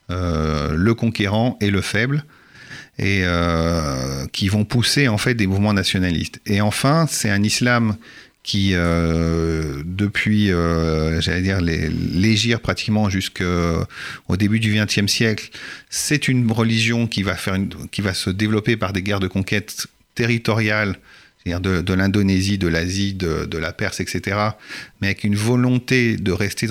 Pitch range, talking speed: 90-115 Hz, 155 wpm